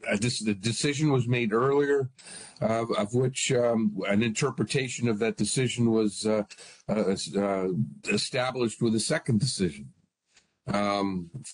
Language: English